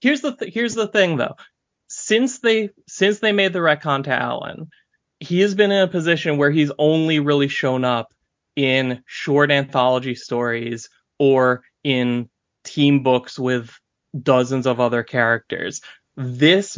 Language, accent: English, American